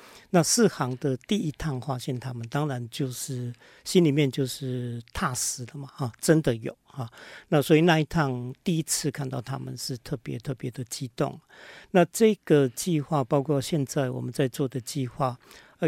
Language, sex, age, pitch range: Chinese, male, 50-69, 130-160 Hz